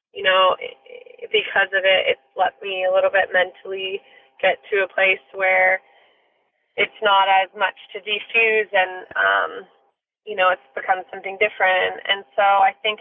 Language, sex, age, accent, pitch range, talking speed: English, female, 20-39, American, 190-215 Hz, 160 wpm